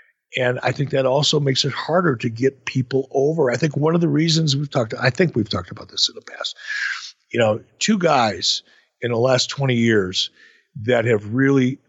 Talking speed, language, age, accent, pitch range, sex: 205 wpm, English, 50-69, American, 115-145 Hz, male